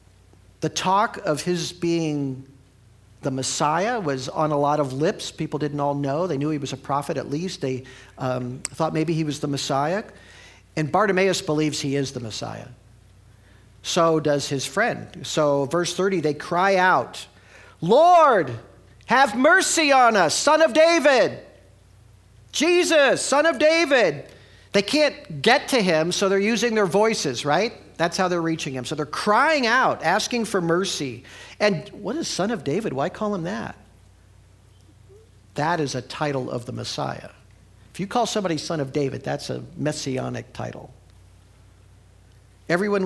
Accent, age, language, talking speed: American, 50-69, English, 160 wpm